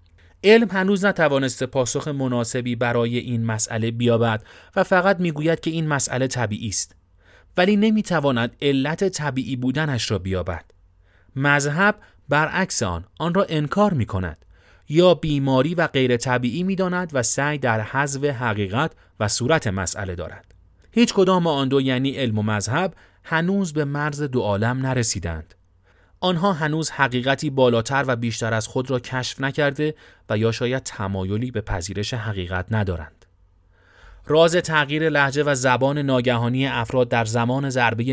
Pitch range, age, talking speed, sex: 115-155 Hz, 30-49, 140 wpm, male